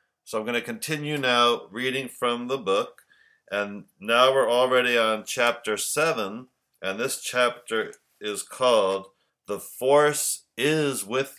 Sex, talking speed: male, 135 wpm